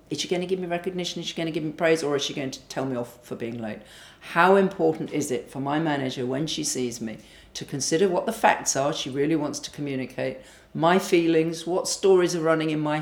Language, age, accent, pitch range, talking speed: English, 50-69, British, 135-170 Hz, 255 wpm